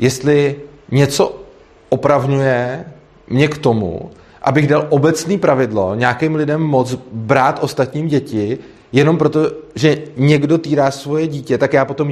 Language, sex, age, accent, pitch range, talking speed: Czech, male, 30-49, native, 135-155 Hz, 130 wpm